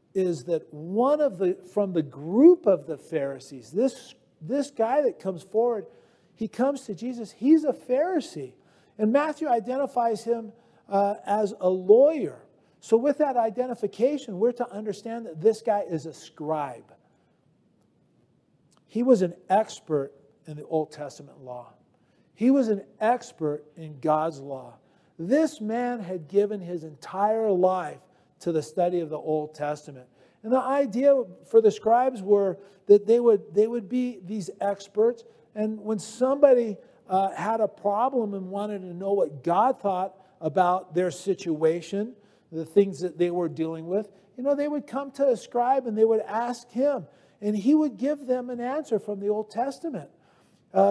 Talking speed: 165 wpm